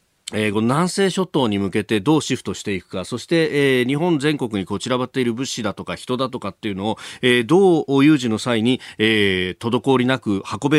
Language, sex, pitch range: Japanese, male, 110-155 Hz